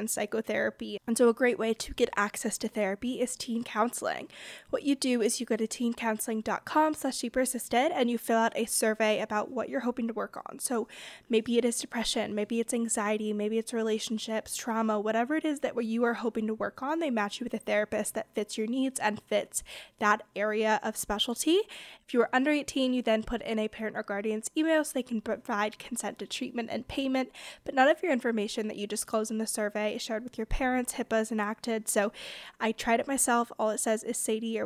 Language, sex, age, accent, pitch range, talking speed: English, female, 20-39, American, 220-255 Hz, 215 wpm